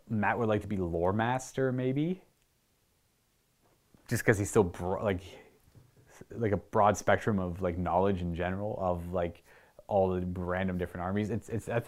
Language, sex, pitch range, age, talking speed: English, male, 95-150 Hz, 30-49, 165 wpm